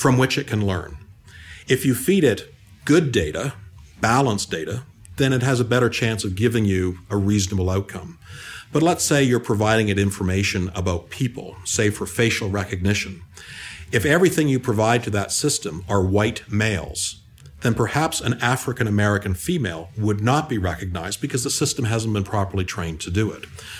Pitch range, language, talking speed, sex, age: 95-120 Hz, English, 170 wpm, male, 50-69